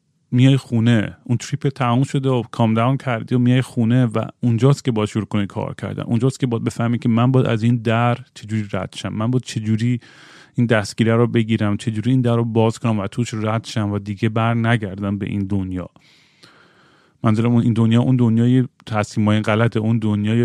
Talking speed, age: 195 wpm, 30-49